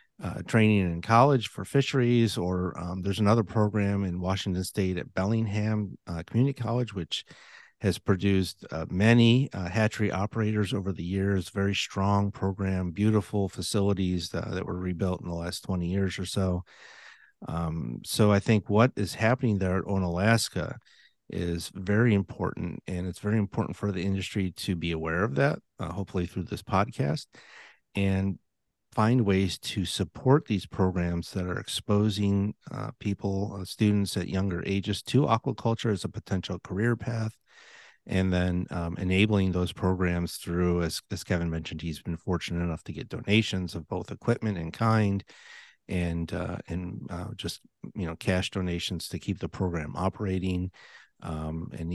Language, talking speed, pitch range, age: English, 160 wpm, 90-105 Hz, 50-69